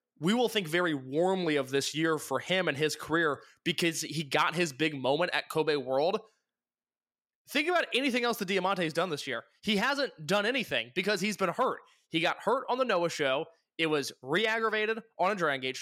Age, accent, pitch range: 20-39, American, 150-195 Hz